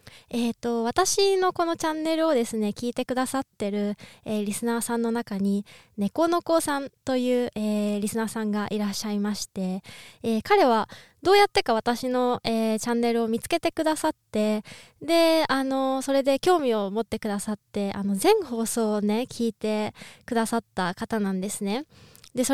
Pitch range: 210-275 Hz